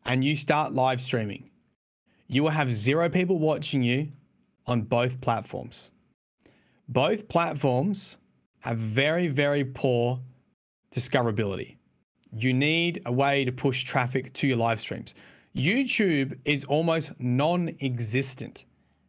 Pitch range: 130-180 Hz